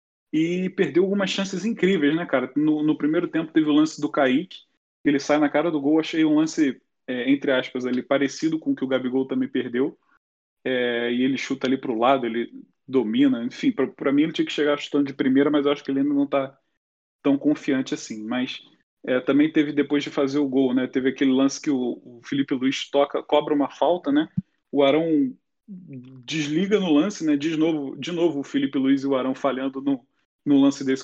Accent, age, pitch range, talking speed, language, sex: Brazilian, 20-39, 135-185 Hz, 215 wpm, Portuguese, male